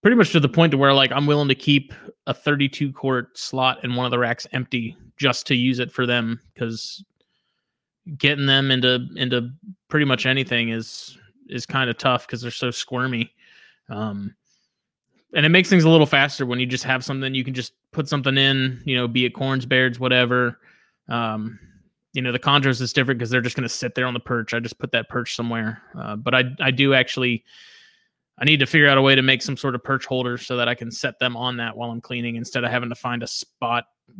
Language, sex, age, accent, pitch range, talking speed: English, male, 20-39, American, 120-135 Hz, 230 wpm